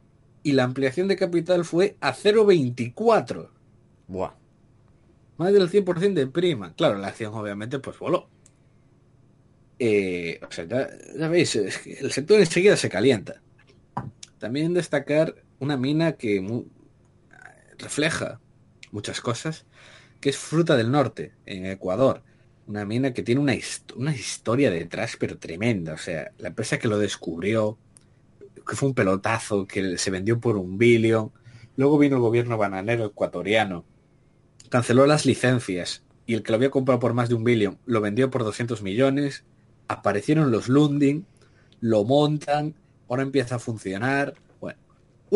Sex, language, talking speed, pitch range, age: male, Spanish, 150 wpm, 110-140 Hz, 30-49